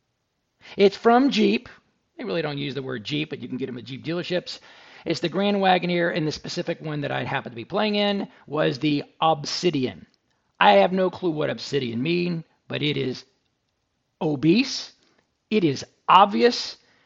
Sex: male